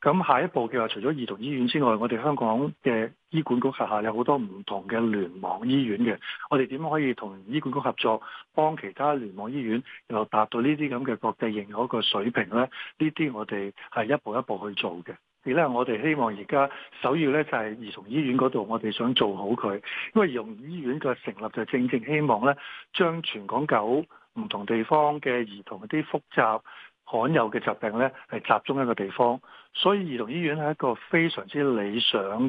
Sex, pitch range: male, 110-145 Hz